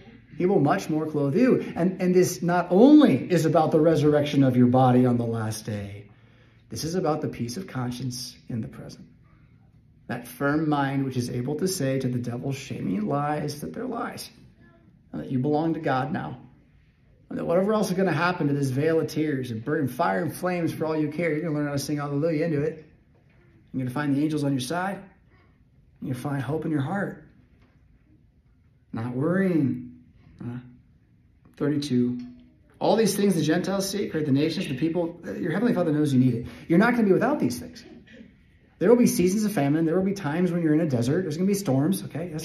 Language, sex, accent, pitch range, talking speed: English, male, American, 125-175 Hz, 220 wpm